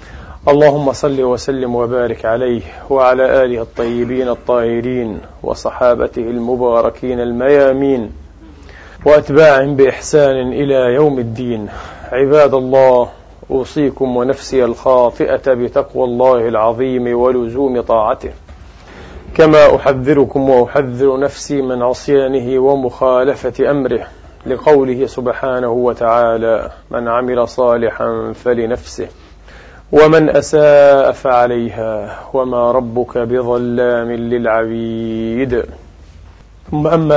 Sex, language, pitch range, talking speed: male, Arabic, 115-135 Hz, 80 wpm